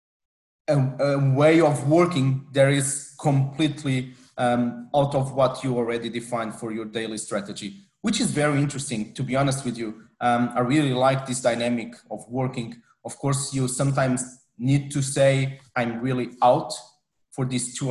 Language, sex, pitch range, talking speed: English, male, 125-145 Hz, 160 wpm